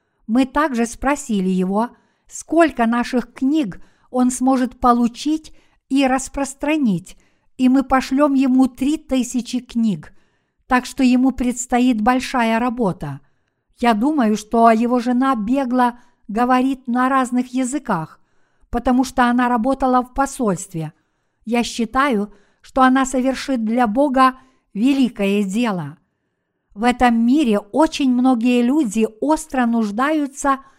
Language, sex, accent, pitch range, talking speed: Russian, female, native, 225-265 Hz, 115 wpm